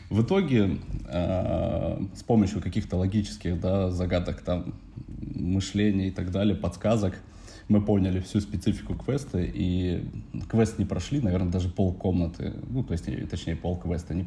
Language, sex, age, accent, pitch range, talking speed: Russian, male, 20-39, native, 90-105 Hz, 135 wpm